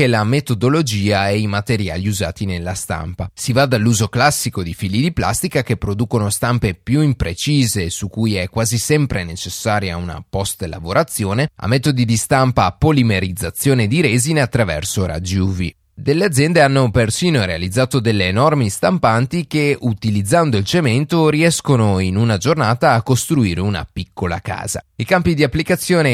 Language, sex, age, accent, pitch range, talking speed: Italian, male, 30-49, native, 100-135 Hz, 150 wpm